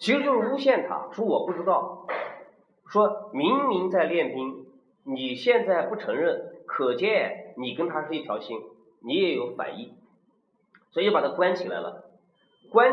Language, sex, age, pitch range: Chinese, male, 40-59, 185-275 Hz